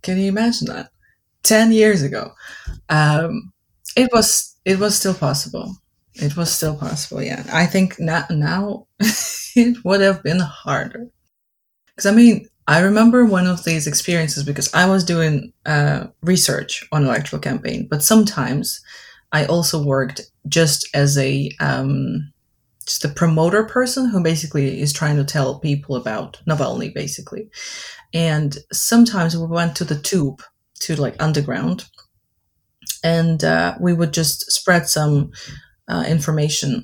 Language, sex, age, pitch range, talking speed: English, female, 20-39, 145-185 Hz, 145 wpm